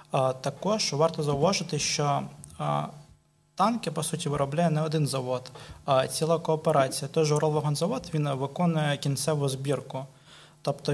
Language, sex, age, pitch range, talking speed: Ukrainian, male, 20-39, 140-160 Hz, 120 wpm